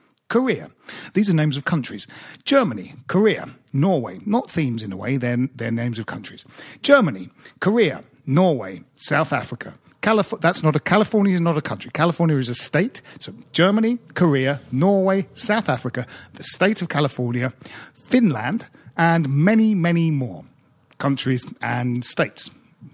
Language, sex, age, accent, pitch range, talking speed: English, male, 40-59, British, 130-195 Hz, 145 wpm